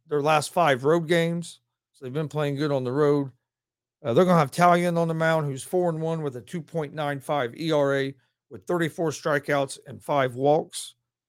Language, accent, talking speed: English, American, 215 wpm